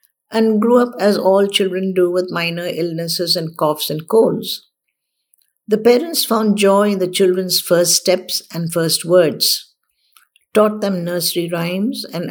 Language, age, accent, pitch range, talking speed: English, 60-79, Indian, 175-220 Hz, 150 wpm